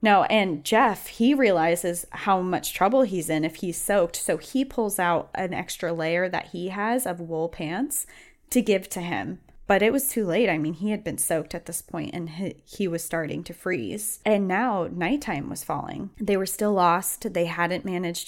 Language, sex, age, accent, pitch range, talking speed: English, female, 20-39, American, 165-200 Hz, 205 wpm